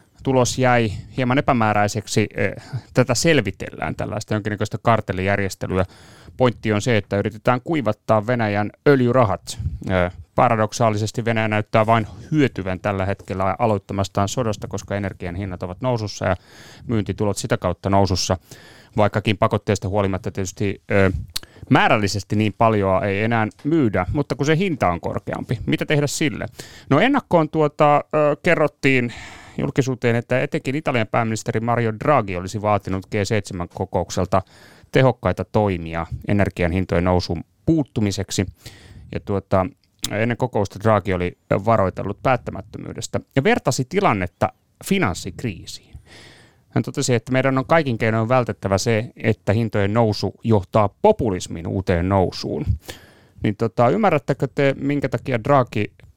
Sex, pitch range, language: male, 100-125 Hz, Finnish